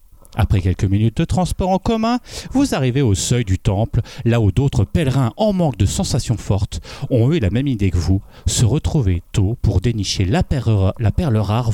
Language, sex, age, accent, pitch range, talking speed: French, male, 40-59, French, 105-160 Hz, 190 wpm